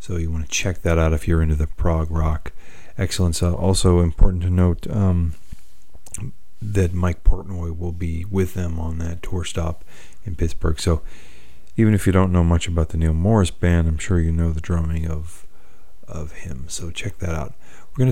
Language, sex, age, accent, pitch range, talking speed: English, male, 40-59, American, 80-95 Hz, 200 wpm